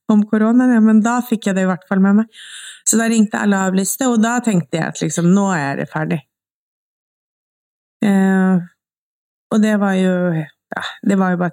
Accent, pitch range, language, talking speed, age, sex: Swedish, 175-205 Hz, English, 195 wpm, 30-49, female